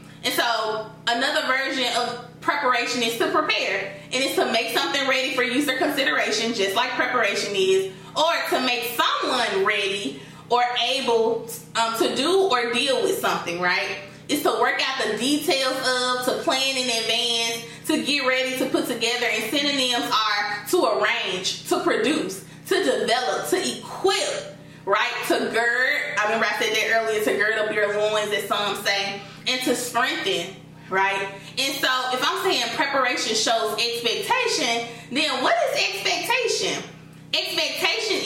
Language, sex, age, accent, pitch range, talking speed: English, female, 20-39, American, 220-295 Hz, 155 wpm